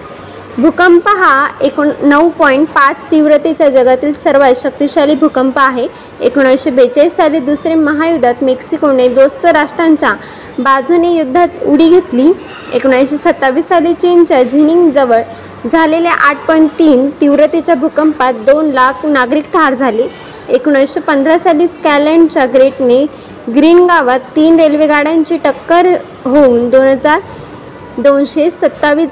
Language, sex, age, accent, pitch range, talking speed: Marathi, female, 20-39, native, 275-330 Hz, 100 wpm